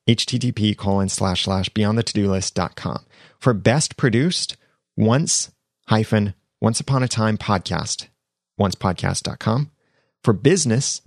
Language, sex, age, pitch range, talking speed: English, male, 30-49, 95-125 Hz, 140 wpm